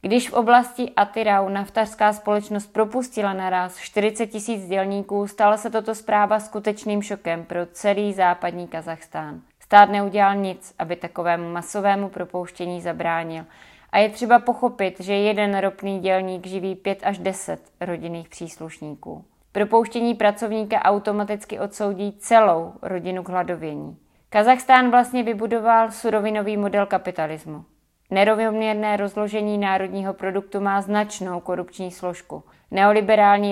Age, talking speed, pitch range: 30-49, 120 wpm, 185-210 Hz